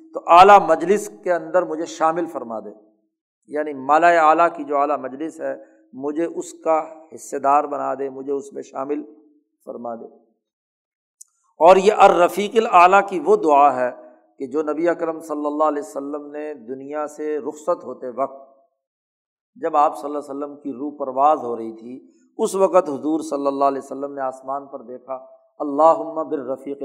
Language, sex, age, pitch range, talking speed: Urdu, male, 50-69, 135-160 Hz, 170 wpm